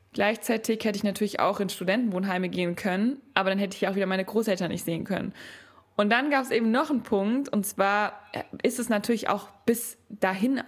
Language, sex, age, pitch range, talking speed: German, female, 20-39, 175-205 Hz, 200 wpm